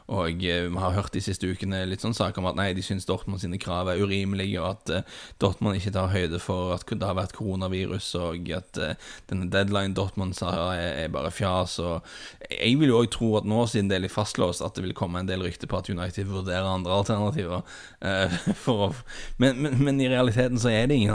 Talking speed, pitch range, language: 225 wpm, 95-115 Hz, English